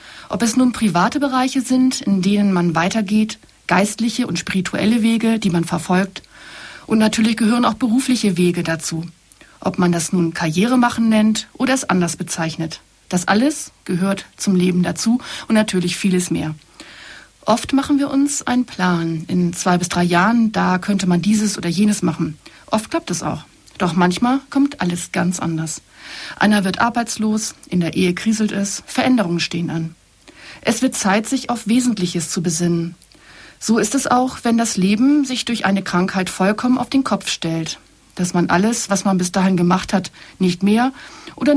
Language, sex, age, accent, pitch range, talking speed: German, female, 60-79, German, 175-230 Hz, 175 wpm